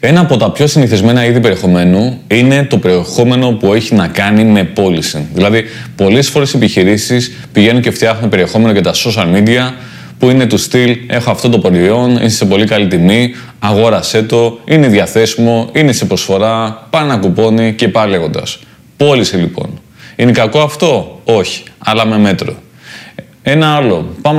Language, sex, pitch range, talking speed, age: Greek, male, 110-140 Hz, 160 wpm, 20-39